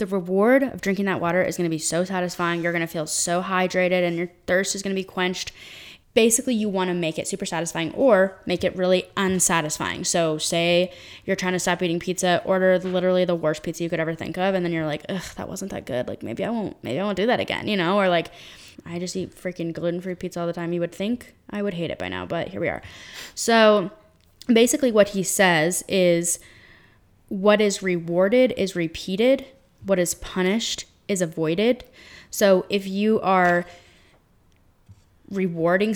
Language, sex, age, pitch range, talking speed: English, female, 10-29, 175-210 Hz, 205 wpm